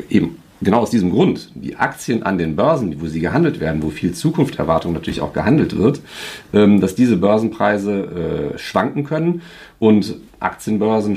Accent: German